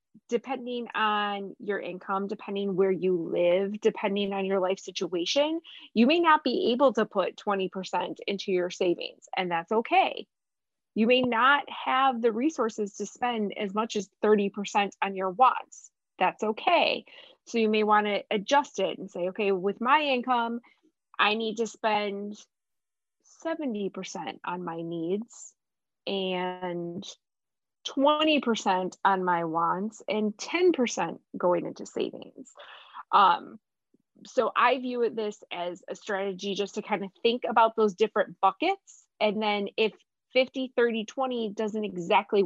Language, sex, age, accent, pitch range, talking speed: English, female, 20-39, American, 195-245 Hz, 145 wpm